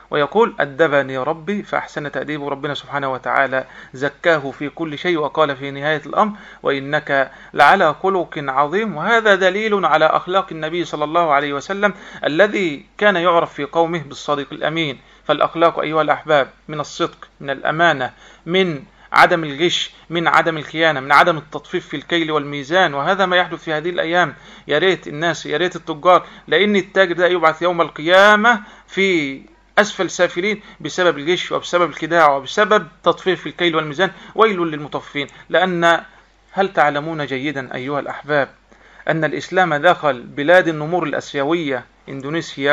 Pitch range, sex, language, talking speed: 145-185 Hz, male, Arabic, 140 wpm